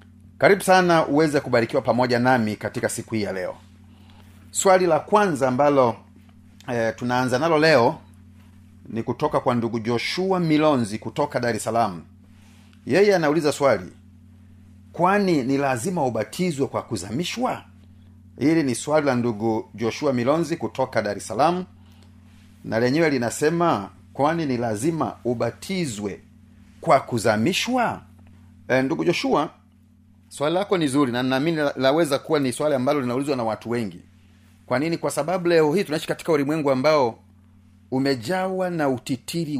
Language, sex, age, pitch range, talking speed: Swahili, male, 40-59, 100-150 Hz, 135 wpm